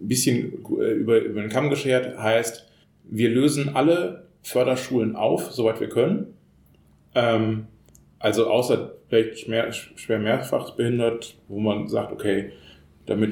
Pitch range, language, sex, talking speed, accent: 105-130 Hz, German, male, 120 wpm, German